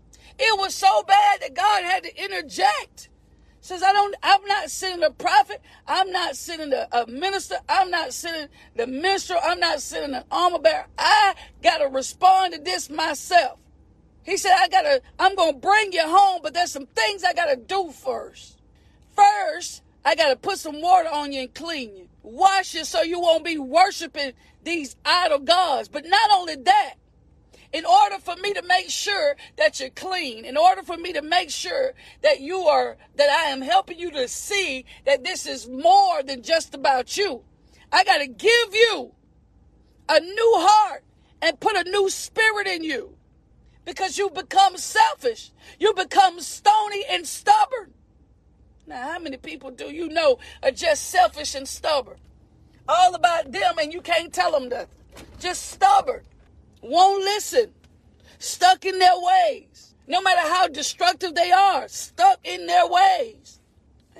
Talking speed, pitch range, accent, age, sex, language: 170 wpm, 310-390 Hz, American, 40-59, female, English